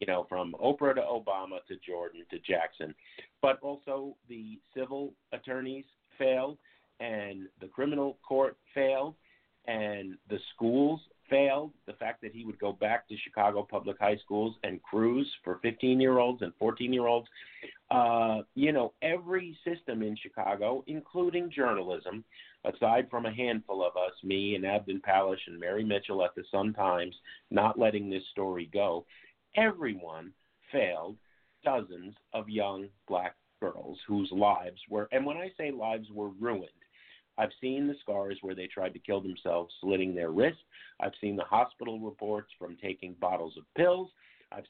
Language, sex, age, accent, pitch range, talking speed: English, male, 50-69, American, 100-135 Hz, 150 wpm